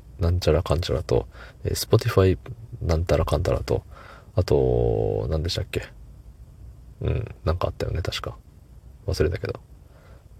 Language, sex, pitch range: Japanese, male, 80-105 Hz